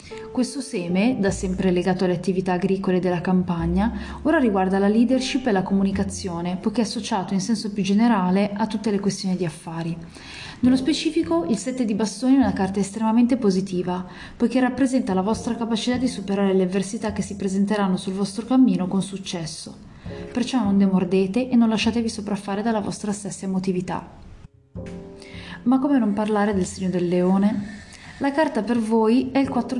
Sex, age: female, 20-39